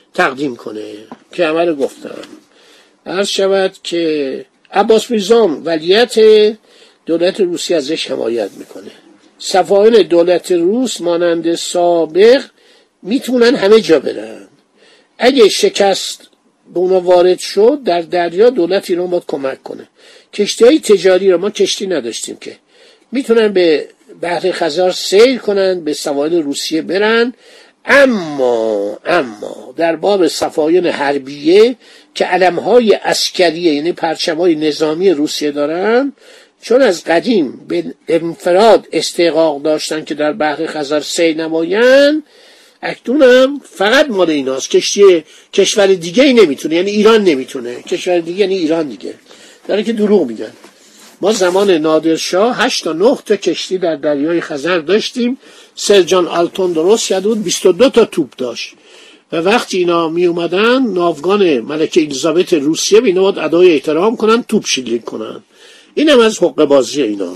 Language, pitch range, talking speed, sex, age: Persian, 165-250 Hz, 130 wpm, male, 60-79